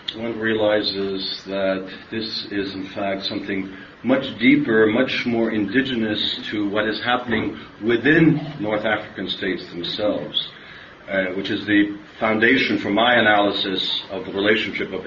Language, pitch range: English, 95-110 Hz